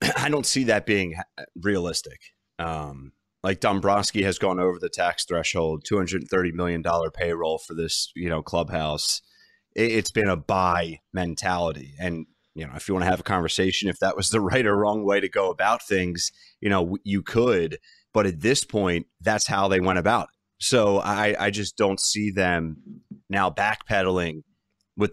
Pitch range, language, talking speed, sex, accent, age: 85-100 Hz, English, 185 wpm, male, American, 30-49